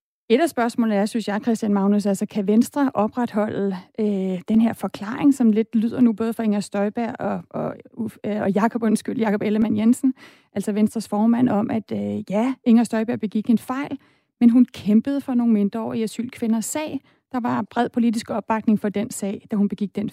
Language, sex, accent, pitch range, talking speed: Danish, female, native, 210-240 Hz, 195 wpm